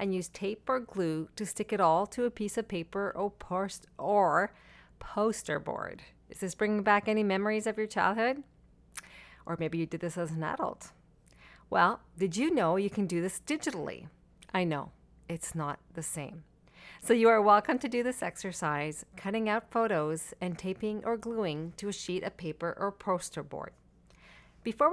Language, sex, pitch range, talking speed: English, female, 170-225 Hz, 175 wpm